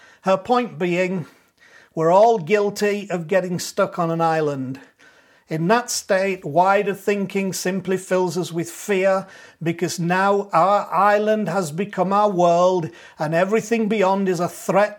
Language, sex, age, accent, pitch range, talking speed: English, male, 50-69, British, 170-205 Hz, 145 wpm